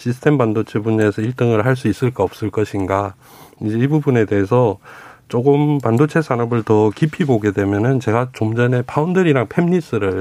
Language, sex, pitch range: Korean, male, 105-145 Hz